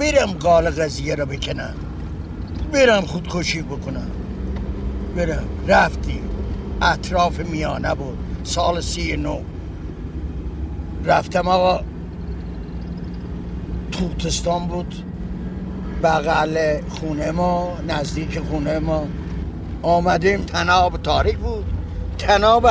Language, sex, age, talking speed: Persian, male, 60-79, 75 wpm